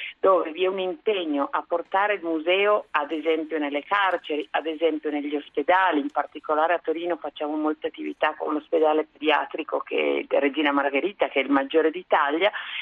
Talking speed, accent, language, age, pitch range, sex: 170 wpm, native, Italian, 50-69, 155-210 Hz, female